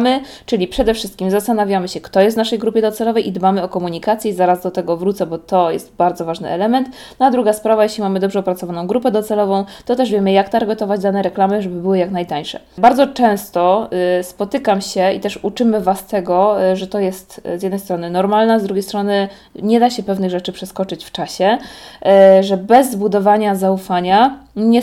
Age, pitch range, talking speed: 20-39, 190-215 Hz, 195 wpm